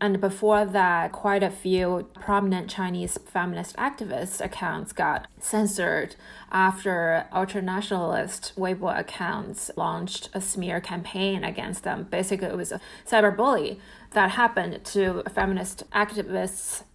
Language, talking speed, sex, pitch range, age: English, 115 wpm, female, 185-220 Hz, 20-39